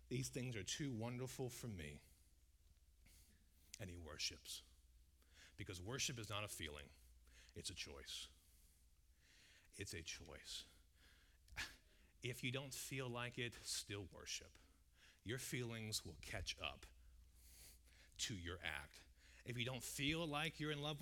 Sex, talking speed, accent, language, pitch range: male, 130 wpm, American, English, 75-110 Hz